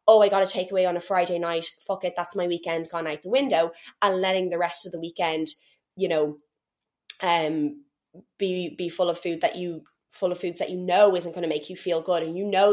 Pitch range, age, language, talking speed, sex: 175-215 Hz, 20-39, English, 240 wpm, female